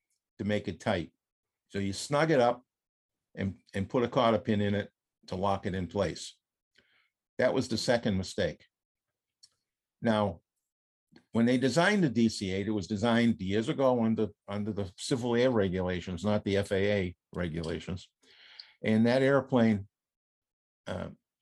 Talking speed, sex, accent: 145 wpm, male, American